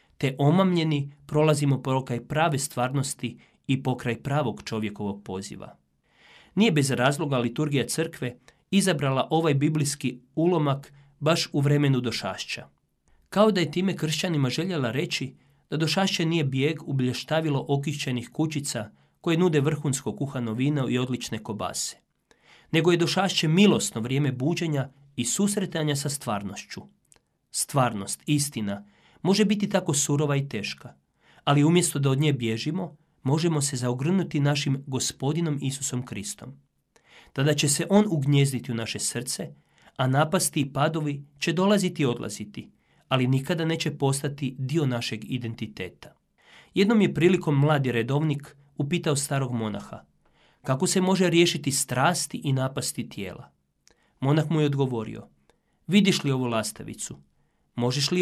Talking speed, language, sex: 130 wpm, Croatian, male